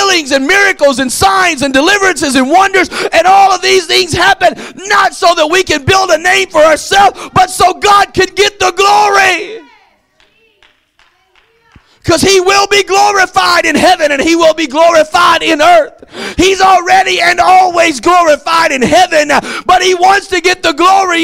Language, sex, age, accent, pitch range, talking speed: English, male, 50-69, American, 310-375 Hz, 165 wpm